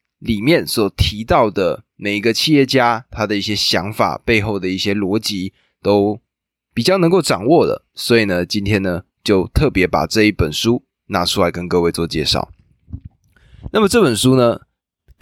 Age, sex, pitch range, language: 20-39, male, 95-120 Hz, Chinese